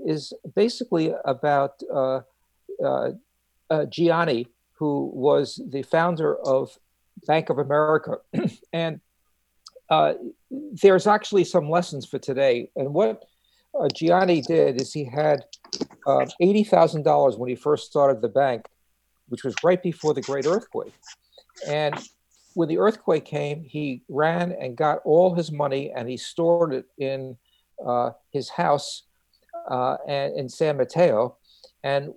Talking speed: 130 wpm